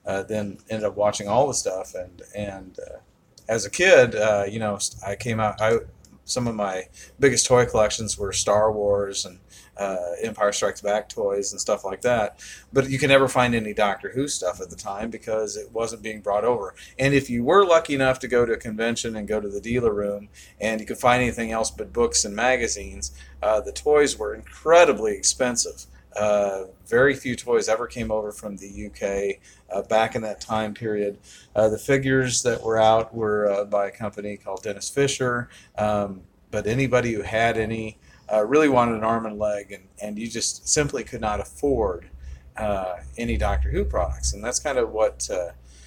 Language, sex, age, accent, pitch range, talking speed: English, male, 40-59, American, 100-115 Hz, 200 wpm